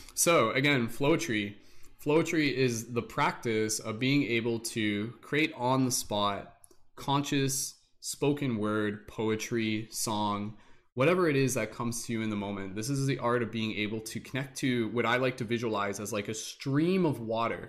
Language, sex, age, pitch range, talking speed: English, male, 20-39, 110-130 Hz, 180 wpm